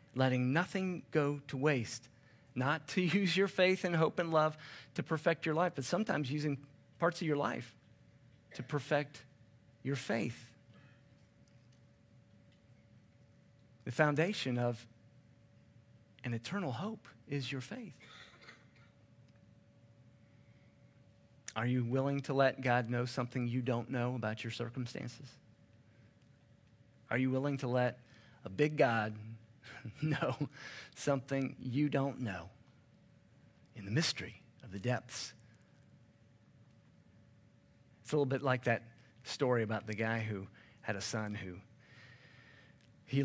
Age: 40-59